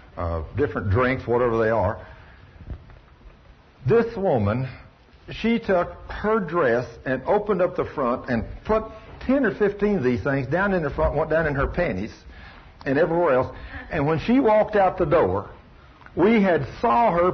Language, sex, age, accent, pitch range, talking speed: English, male, 60-79, American, 115-170 Hz, 165 wpm